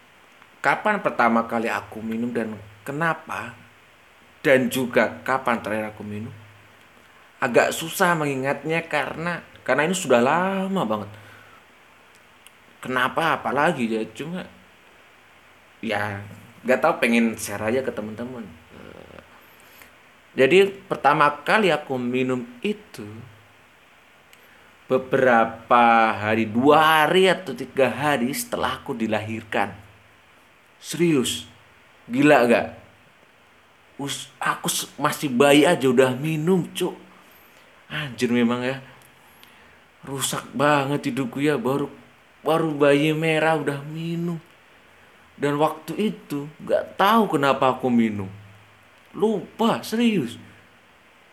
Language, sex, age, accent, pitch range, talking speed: Indonesian, male, 30-49, native, 115-160 Hz, 100 wpm